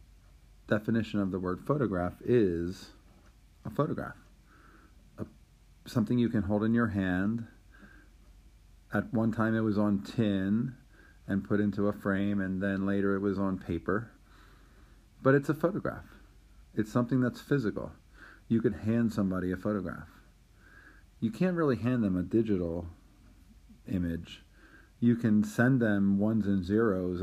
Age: 40-59